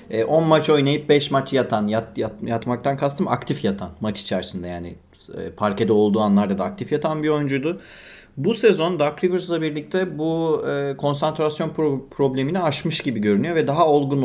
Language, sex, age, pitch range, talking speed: Turkish, male, 30-49, 115-160 Hz, 155 wpm